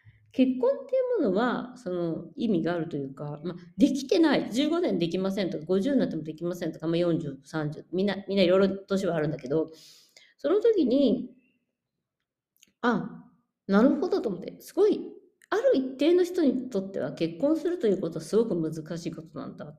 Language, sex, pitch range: Japanese, female, 165-270 Hz